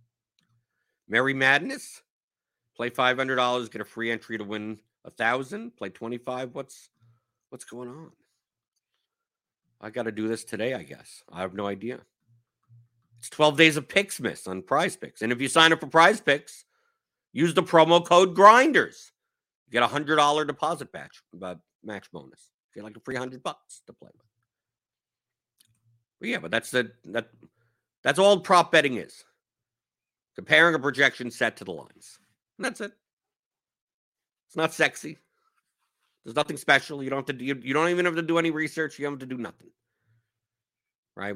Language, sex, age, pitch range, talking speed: English, male, 50-69, 115-150 Hz, 175 wpm